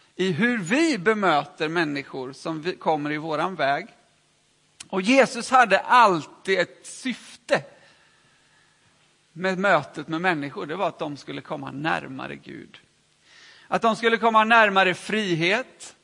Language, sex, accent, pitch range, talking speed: Swedish, male, native, 160-230 Hz, 130 wpm